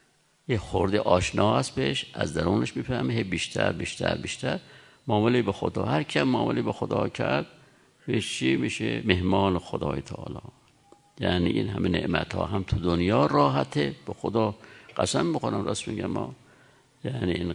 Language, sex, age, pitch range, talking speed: Persian, male, 60-79, 95-135 Hz, 145 wpm